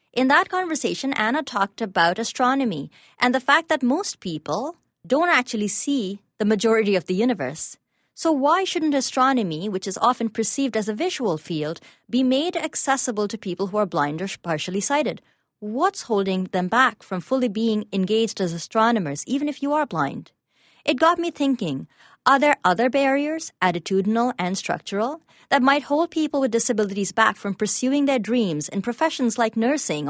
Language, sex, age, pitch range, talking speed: English, female, 30-49, 190-270 Hz, 170 wpm